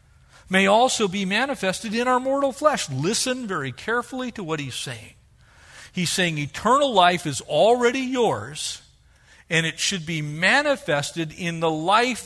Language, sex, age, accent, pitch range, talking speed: English, male, 50-69, American, 150-230 Hz, 145 wpm